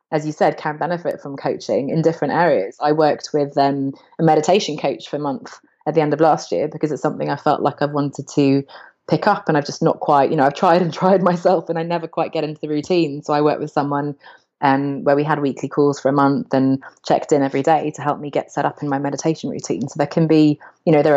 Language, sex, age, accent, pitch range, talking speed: English, female, 20-39, British, 145-165 Hz, 265 wpm